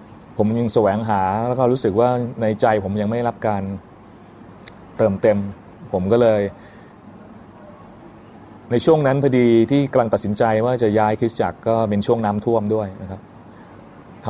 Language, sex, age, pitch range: Thai, male, 20-39, 100-120 Hz